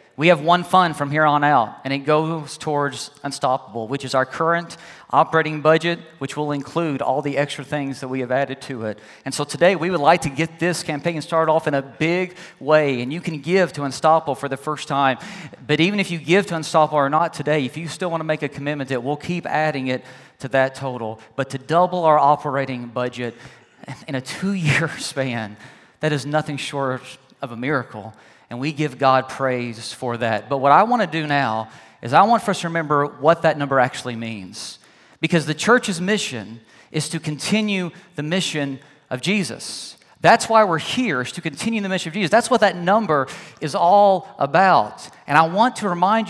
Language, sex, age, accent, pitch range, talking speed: English, male, 40-59, American, 140-190 Hz, 210 wpm